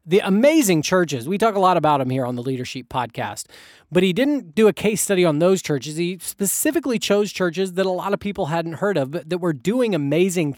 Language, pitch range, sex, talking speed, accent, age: English, 155-205 Hz, male, 215 wpm, American, 30-49